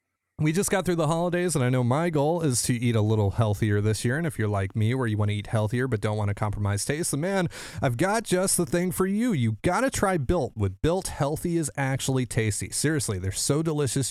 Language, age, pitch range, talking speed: English, 30-49, 115-170 Hz, 250 wpm